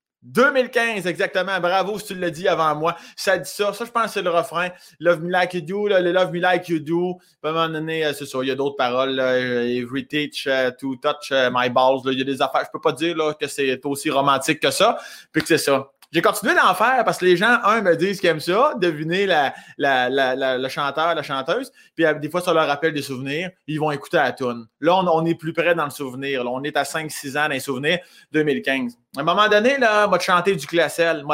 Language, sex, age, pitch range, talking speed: French, male, 20-39, 145-185 Hz, 260 wpm